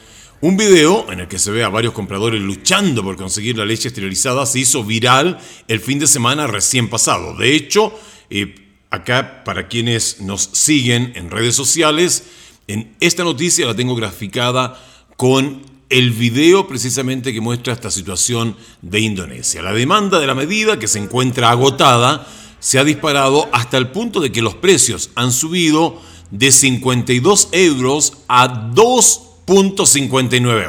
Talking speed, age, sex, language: 155 wpm, 40-59, male, Spanish